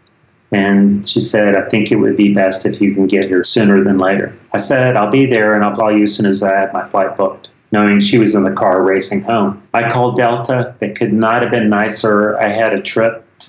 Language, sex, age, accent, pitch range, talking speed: English, male, 30-49, American, 105-120 Hz, 250 wpm